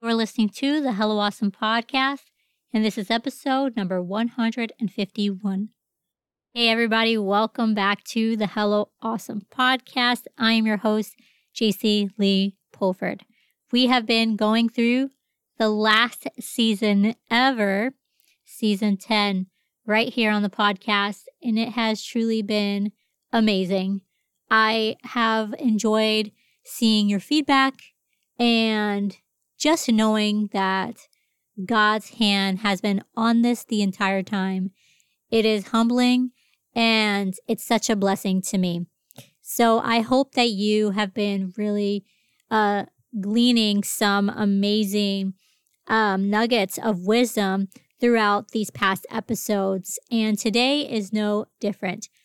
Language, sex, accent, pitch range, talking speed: English, female, American, 205-235 Hz, 120 wpm